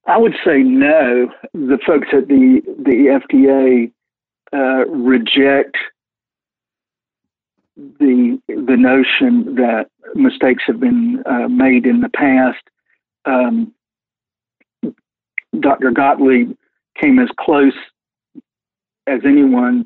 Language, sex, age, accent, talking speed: English, male, 60-79, American, 105 wpm